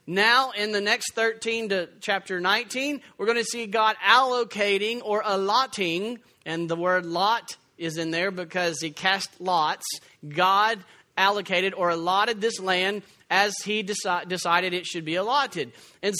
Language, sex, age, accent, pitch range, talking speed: English, male, 40-59, American, 195-245 Hz, 150 wpm